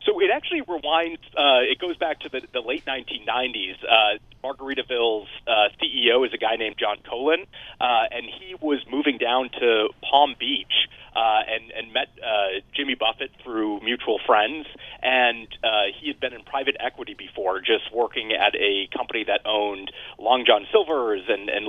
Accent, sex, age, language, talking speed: American, male, 30-49, English, 175 wpm